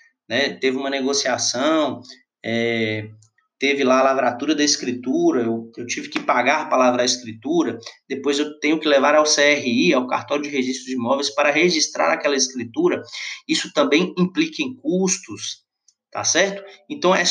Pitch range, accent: 125-195 Hz, Brazilian